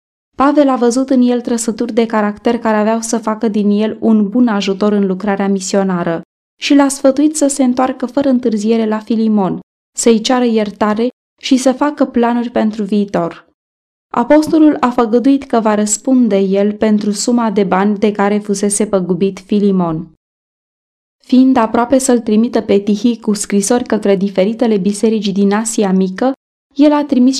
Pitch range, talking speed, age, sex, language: 200-245 Hz, 160 wpm, 20-39, female, Romanian